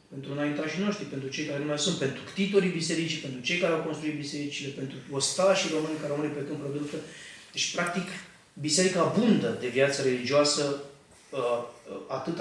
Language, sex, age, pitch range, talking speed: Romanian, male, 30-49, 135-165 Hz, 170 wpm